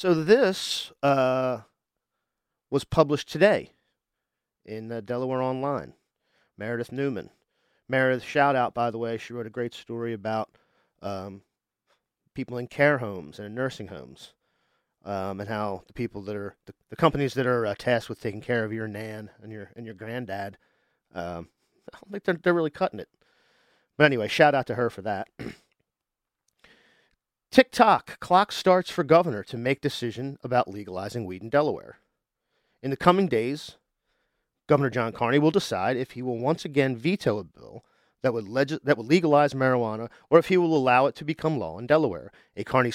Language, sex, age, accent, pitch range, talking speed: English, male, 40-59, American, 110-145 Hz, 170 wpm